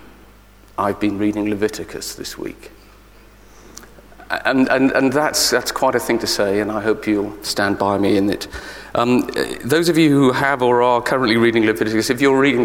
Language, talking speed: English, 185 wpm